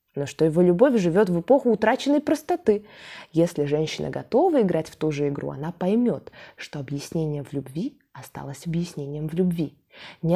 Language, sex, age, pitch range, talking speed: Russian, female, 20-39, 160-220 Hz, 160 wpm